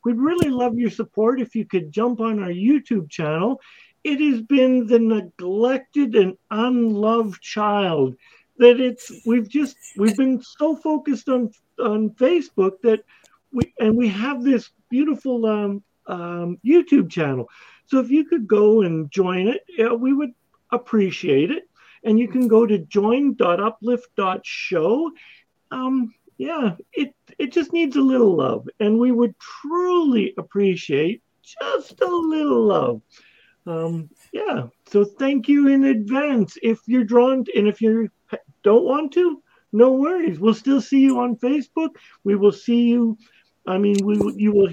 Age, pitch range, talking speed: 50-69, 205-265 Hz, 155 wpm